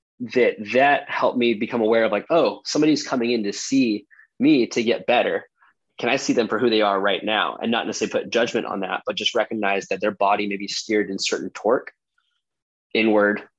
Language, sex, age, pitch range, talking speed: English, male, 20-39, 100-120 Hz, 210 wpm